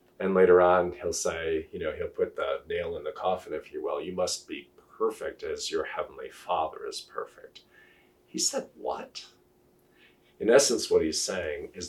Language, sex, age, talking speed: English, male, 40-59, 175 wpm